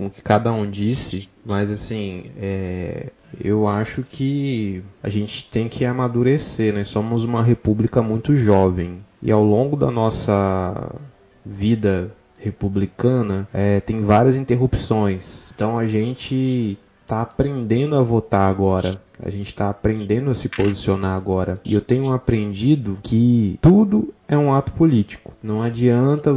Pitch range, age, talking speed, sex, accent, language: 100-120 Hz, 20-39, 140 wpm, male, Brazilian, Portuguese